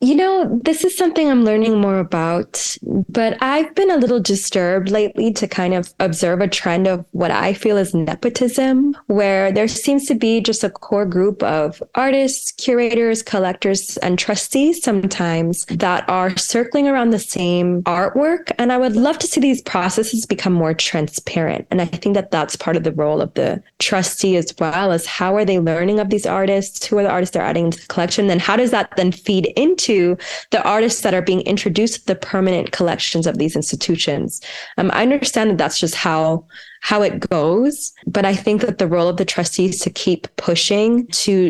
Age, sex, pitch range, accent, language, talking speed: 20-39, female, 175-225 Hz, American, English, 200 wpm